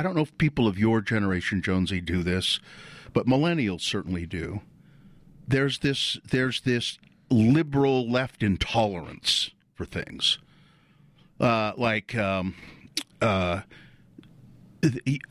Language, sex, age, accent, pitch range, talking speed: English, male, 50-69, American, 100-135 Hz, 110 wpm